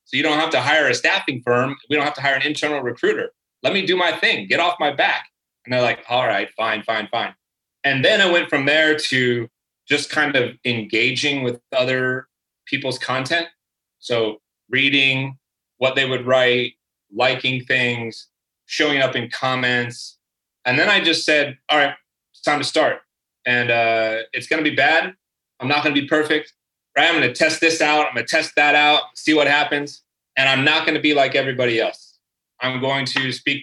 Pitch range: 120-150 Hz